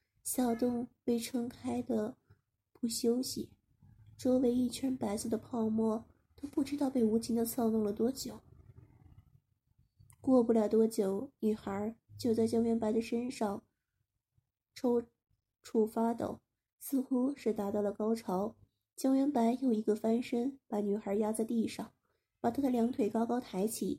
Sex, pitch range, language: female, 205-245 Hz, Chinese